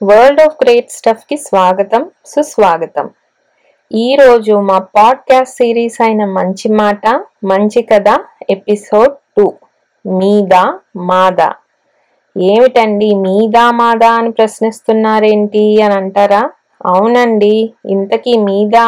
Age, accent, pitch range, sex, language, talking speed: 20-39, native, 195-235 Hz, female, Telugu, 95 wpm